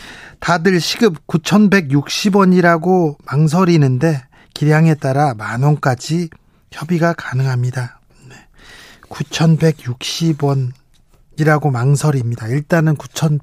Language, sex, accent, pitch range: Korean, male, native, 140-175 Hz